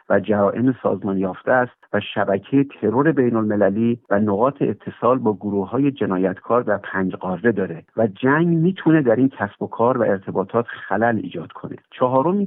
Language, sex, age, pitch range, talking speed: Persian, male, 50-69, 105-135 Hz, 165 wpm